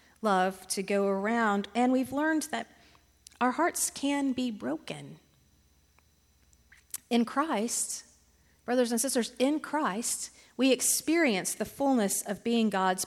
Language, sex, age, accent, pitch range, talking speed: English, female, 40-59, American, 210-270 Hz, 125 wpm